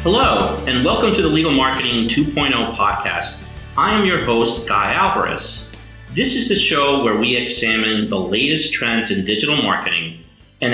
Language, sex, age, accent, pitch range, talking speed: English, male, 40-59, American, 105-145 Hz, 155 wpm